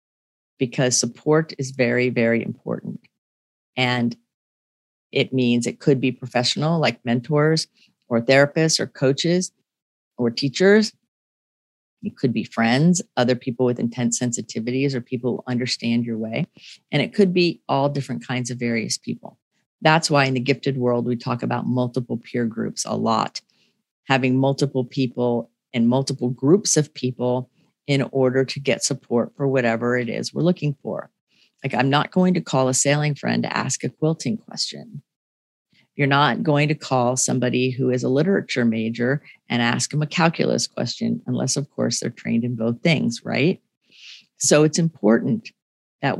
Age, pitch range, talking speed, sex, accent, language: 40-59, 120-150 Hz, 160 wpm, female, American, English